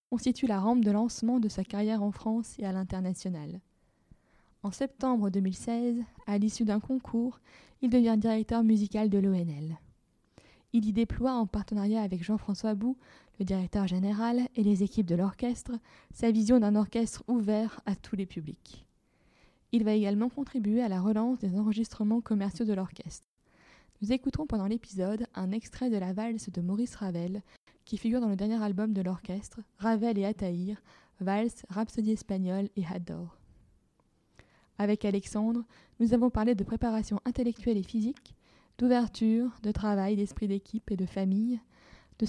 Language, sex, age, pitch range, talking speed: French, female, 20-39, 195-230 Hz, 155 wpm